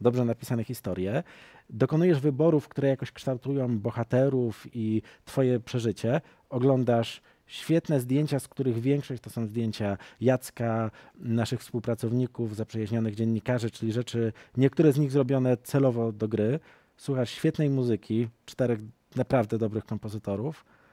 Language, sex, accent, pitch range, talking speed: Polish, male, native, 115-155 Hz, 120 wpm